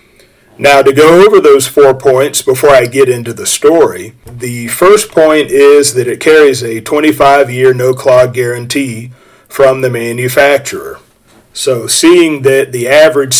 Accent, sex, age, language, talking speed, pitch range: American, male, 40-59, English, 145 wpm, 125-150 Hz